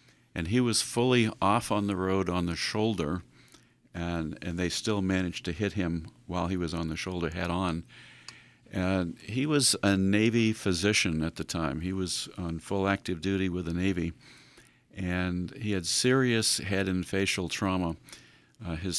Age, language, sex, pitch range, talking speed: 50-69, English, male, 85-105 Hz, 170 wpm